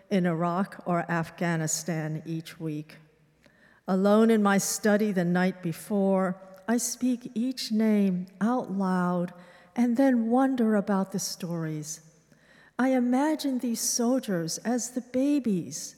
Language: English